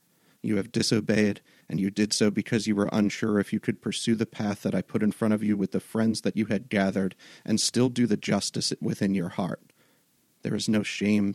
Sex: male